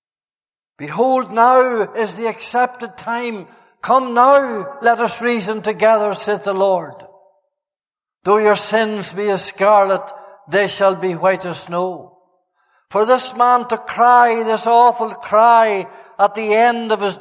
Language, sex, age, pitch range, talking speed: English, male, 60-79, 220-255 Hz, 140 wpm